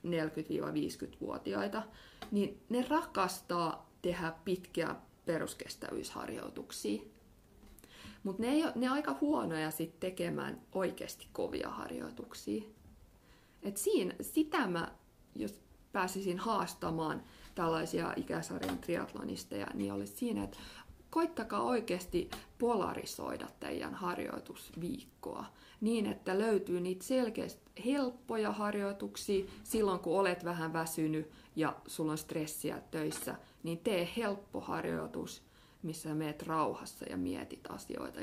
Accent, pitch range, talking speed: native, 160-235 Hz, 95 wpm